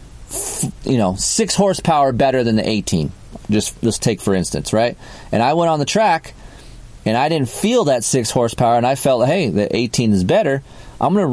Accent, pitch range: American, 105-135 Hz